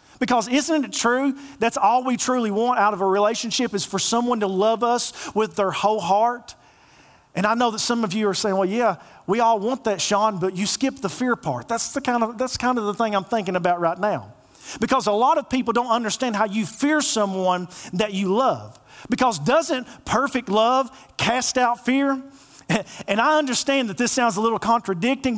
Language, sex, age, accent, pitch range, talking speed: English, male, 40-59, American, 195-260 Hz, 210 wpm